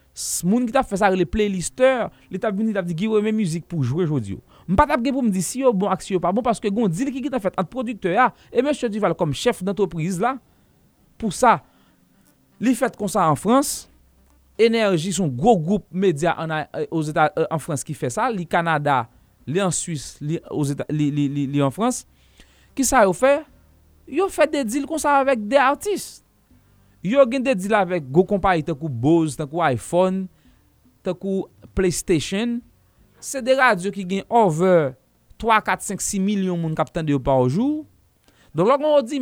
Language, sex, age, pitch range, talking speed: English, male, 30-49, 165-260 Hz, 160 wpm